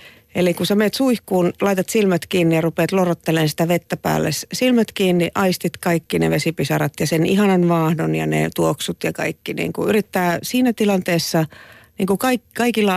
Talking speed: 155 wpm